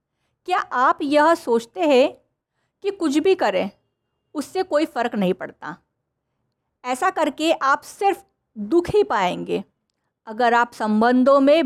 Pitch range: 245-340 Hz